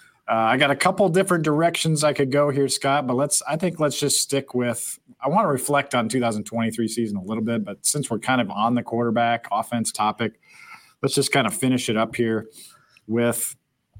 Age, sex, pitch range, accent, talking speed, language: 40-59, male, 110-140 Hz, American, 210 wpm, English